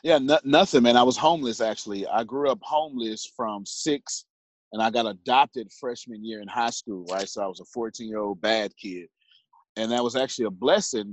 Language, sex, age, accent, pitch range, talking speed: English, male, 30-49, American, 105-130 Hz, 195 wpm